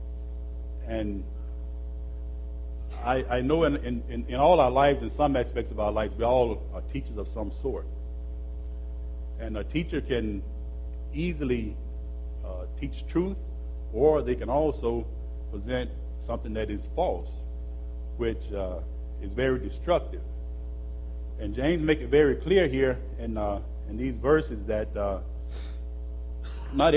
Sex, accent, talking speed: male, American, 135 wpm